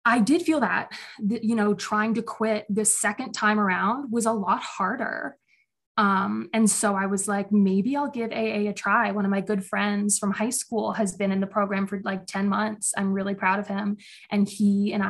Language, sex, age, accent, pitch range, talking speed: English, female, 20-39, American, 200-235 Hz, 220 wpm